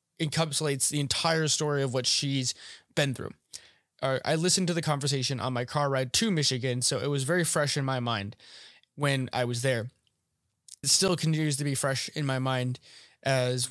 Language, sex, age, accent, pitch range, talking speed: English, male, 20-39, American, 130-160 Hz, 185 wpm